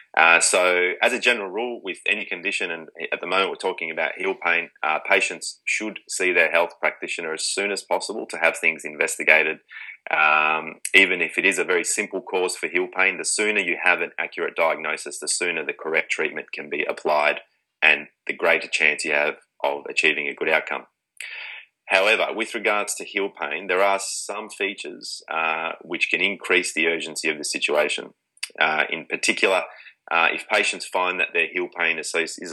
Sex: male